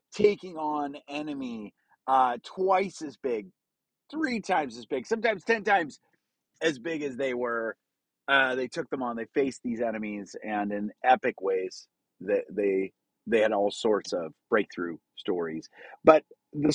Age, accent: 30-49, American